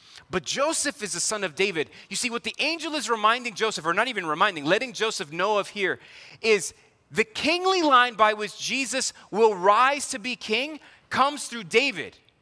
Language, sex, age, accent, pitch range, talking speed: English, male, 30-49, American, 190-250 Hz, 190 wpm